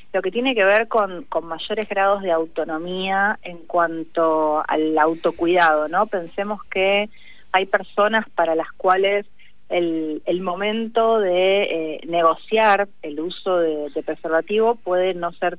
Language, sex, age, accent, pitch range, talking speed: Spanish, female, 30-49, Argentinian, 165-190 Hz, 140 wpm